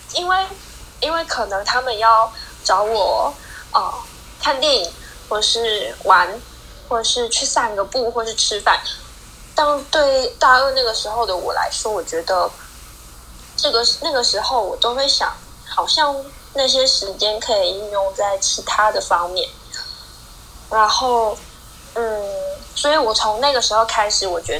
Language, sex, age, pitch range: Chinese, female, 10-29, 195-270 Hz